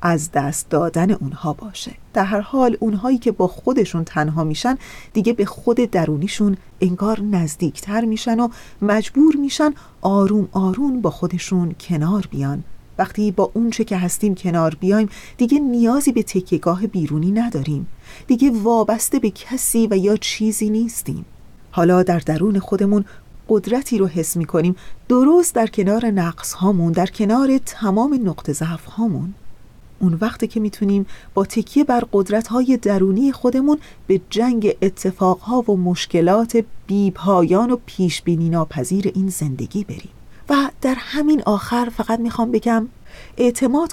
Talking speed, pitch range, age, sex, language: 140 wpm, 180-230 Hz, 30-49, female, Persian